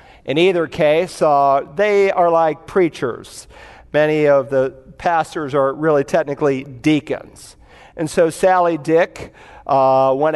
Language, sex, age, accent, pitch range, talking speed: English, male, 50-69, American, 150-190 Hz, 125 wpm